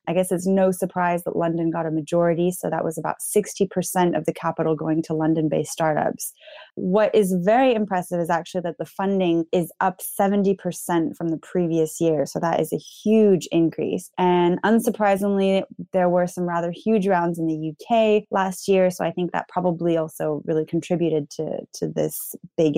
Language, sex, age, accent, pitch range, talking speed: English, female, 20-39, American, 165-190 Hz, 180 wpm